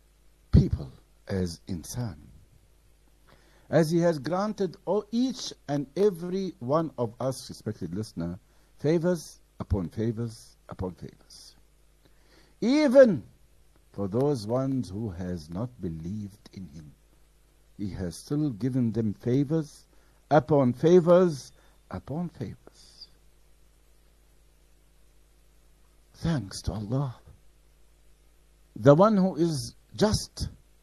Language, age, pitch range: English, 60-79, 100-170 Hz